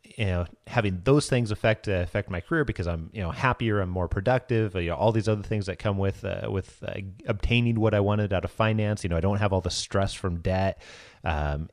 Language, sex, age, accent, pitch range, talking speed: English, male, 30-49, American, 95-115 Hz, 245 wpm